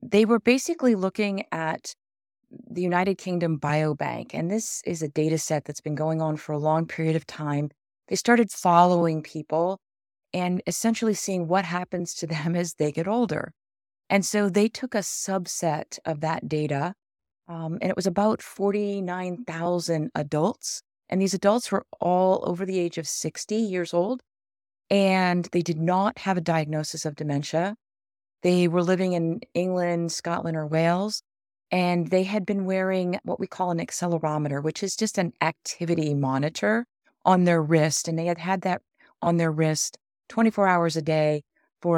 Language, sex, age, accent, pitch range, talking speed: English, female, 30-49, American, 155-190 Hz, 165 wpm